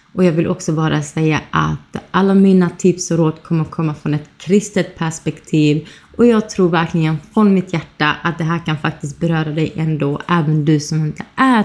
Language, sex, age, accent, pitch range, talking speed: Swedish, female, 20-39, native, 165-190 Hz, 200 wpm